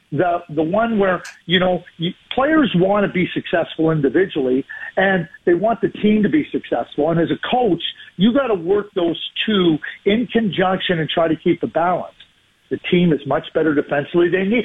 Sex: male